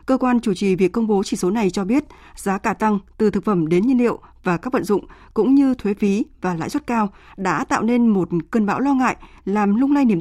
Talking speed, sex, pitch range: 265 wpm, female, 195-260 Hz